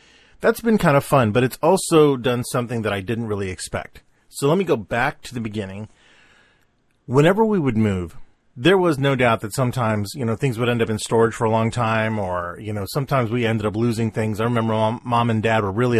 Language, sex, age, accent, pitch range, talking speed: English, male, 40-59, American, 110-140 Hz, 235 wpm